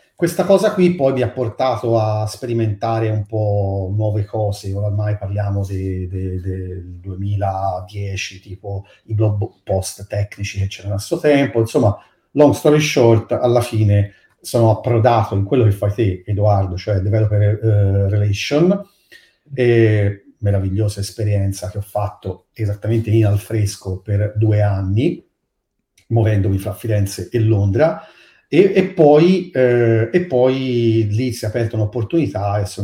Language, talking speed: Italian, 140 wpm